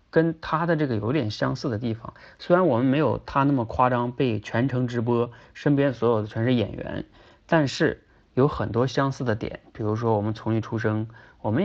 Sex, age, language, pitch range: male, 30-49, Chinese, 105-130 Hz